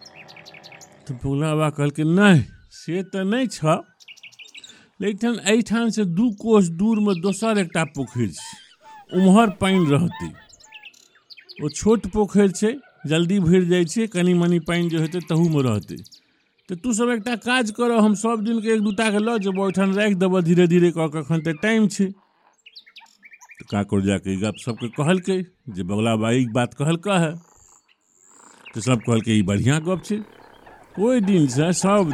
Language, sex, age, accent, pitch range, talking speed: Hindi, male, 50-69, native, 140-205 Hz, 135 wpm